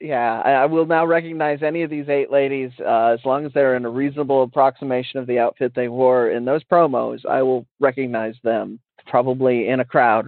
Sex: male